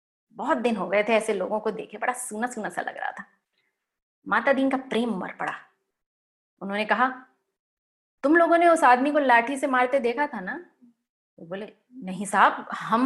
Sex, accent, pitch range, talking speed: female, native, 210-280 Hz, 185 wpm